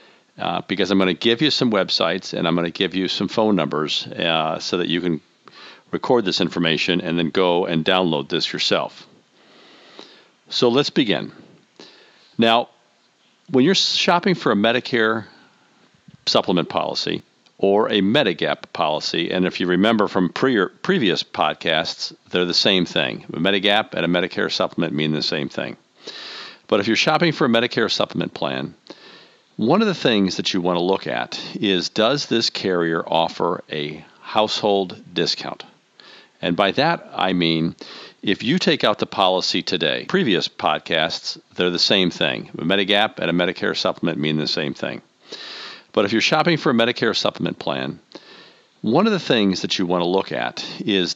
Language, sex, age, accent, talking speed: English, male, 50-69, American, 170 wpm